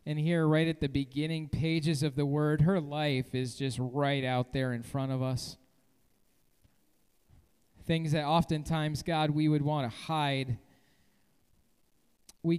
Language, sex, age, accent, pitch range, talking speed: English, male, 40-59, American, 140-180 Hz, 150 wpm